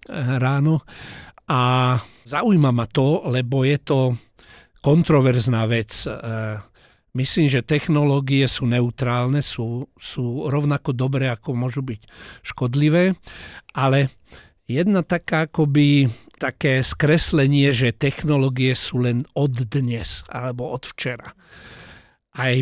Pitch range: 125-155 Hz